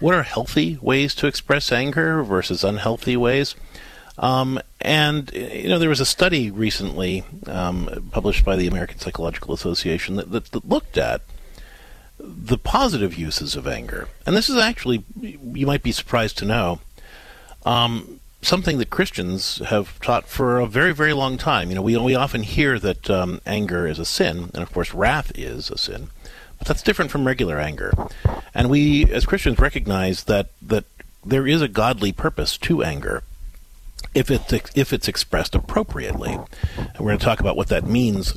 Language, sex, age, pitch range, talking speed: English, male, 50-69, 95-135 Hz, 175 wpm